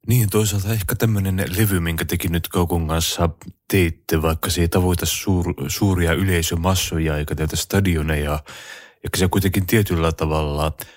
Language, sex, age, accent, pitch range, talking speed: Finnish, male, 30-49, native, 75-85 Hz, 130 wpm